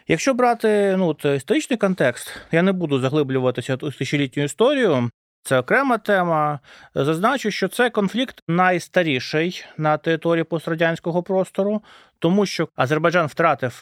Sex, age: male, 30-49